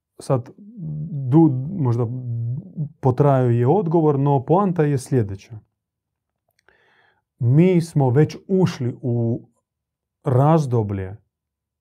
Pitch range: 110-135 Hz